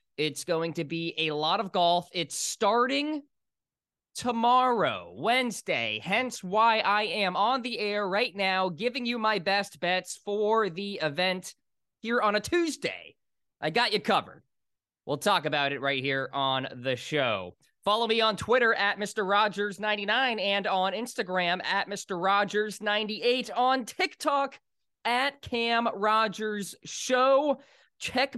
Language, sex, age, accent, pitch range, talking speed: English, male, 20-39, American, 170-230 Hz, 140 wpm